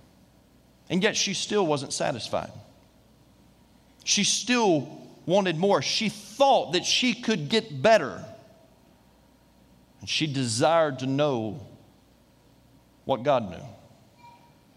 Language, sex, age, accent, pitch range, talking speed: English, male, 40-59, American, 170-215 Hz, 100 wpm